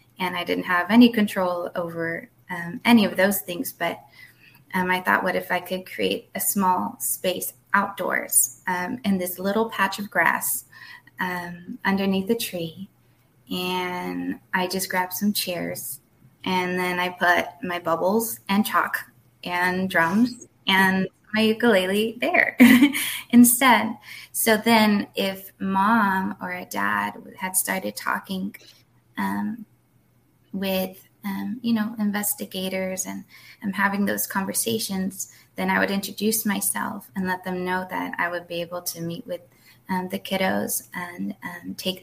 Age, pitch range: 20-39, 175-205 Hz